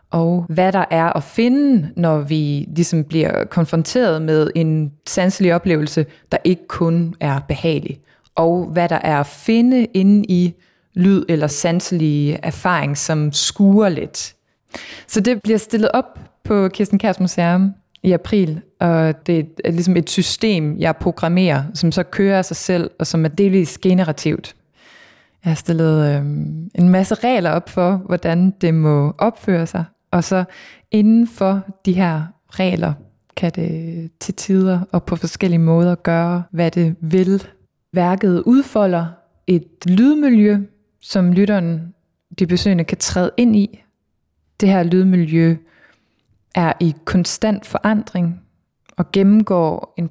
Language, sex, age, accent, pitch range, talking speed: Danish, female, 20-39, native, 165-195 Hz, 145 wpm